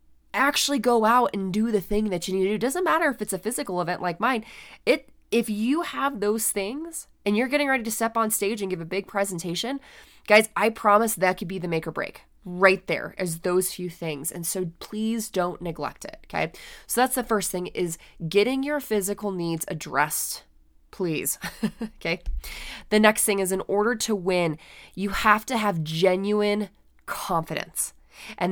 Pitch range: 175-220 Hz